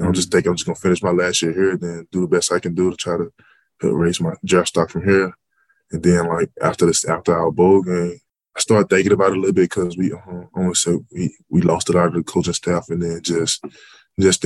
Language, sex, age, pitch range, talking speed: English, male, 20-39, 85-95 Hz, 255 wpm